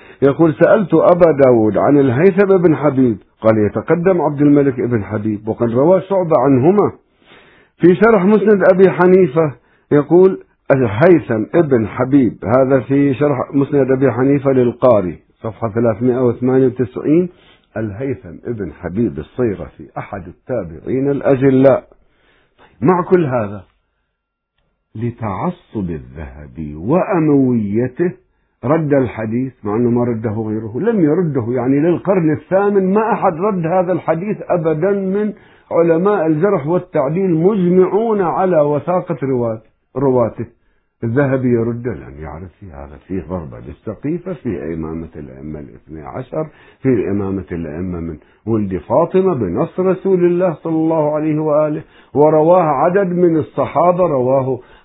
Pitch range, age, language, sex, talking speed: 105-170 Hz, 50-69, Arabic, male, 120 wpm